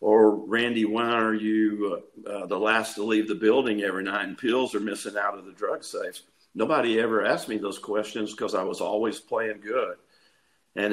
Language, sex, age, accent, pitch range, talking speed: English, male, 50-69, American, 110-125 Hz, 205 wpm